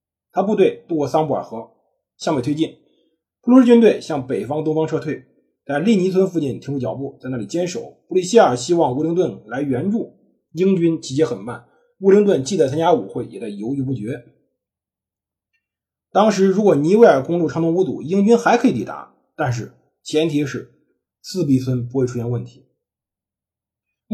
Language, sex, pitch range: Chinese, male, 130-200 Hz